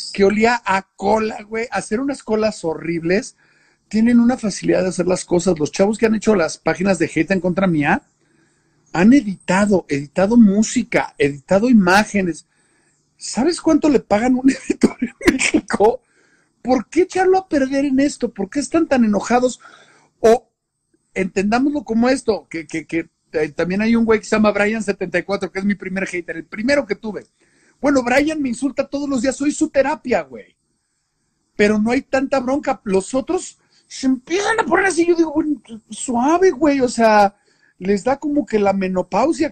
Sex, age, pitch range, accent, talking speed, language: male, 50-69, 180-265 Hz, Mexican, 175 wpm, Spanish